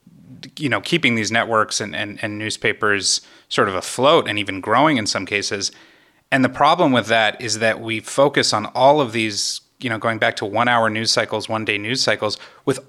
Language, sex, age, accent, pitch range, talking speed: English, male, 30-49, American, 115-150 Hz, 200 wpm